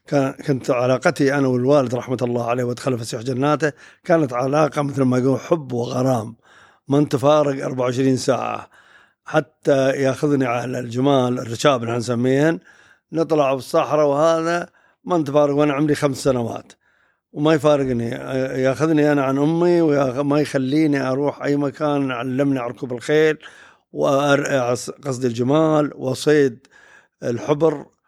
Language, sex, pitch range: Arabic, male, 130-160 Hz